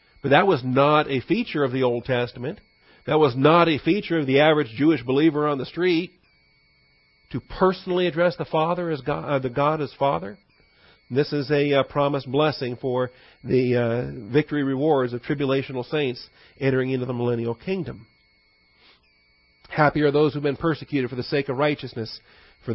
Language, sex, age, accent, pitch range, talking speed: English, male, 40-59, American, 125-160 Hz, 175 wpm